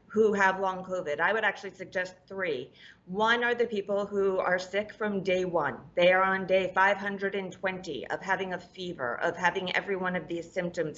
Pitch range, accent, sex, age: 175-205 Hz, American, female, 30-49